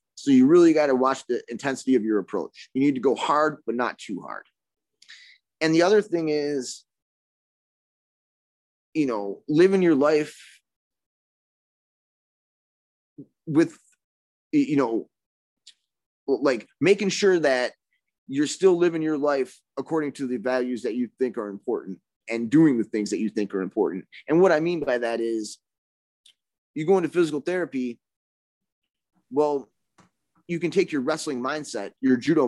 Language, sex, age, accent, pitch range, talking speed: English, male, 20-39, American, 115-155 Hz, 150 wpm